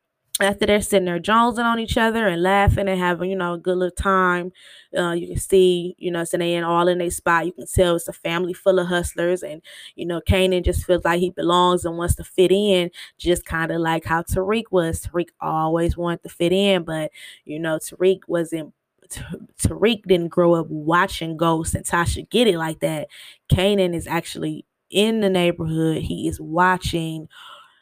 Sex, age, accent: female, 20-39, American